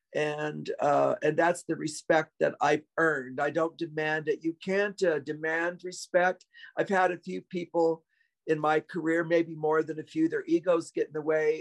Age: 50-69